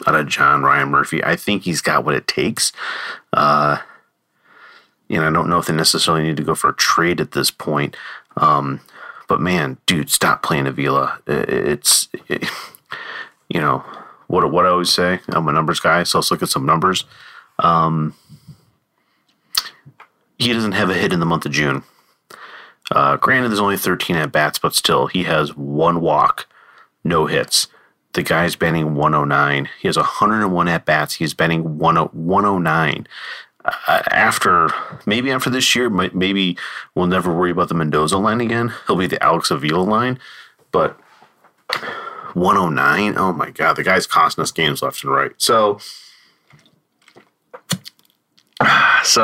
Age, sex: 30-49, male